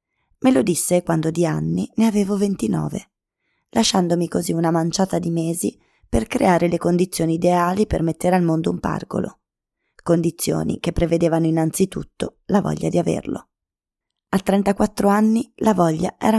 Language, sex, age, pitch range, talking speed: Italian, female, 20-39, 160-200 Hz, 145 wpm